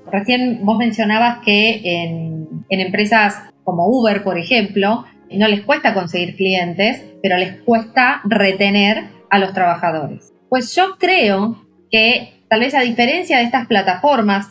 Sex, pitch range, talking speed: female, 190-245 Hz, 140 wpm